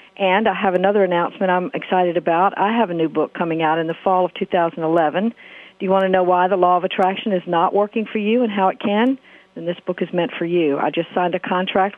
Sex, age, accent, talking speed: female, 50-69, American, 255 wpm